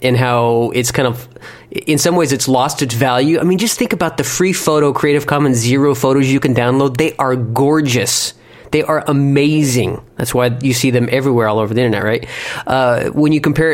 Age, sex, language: 30-49, male, English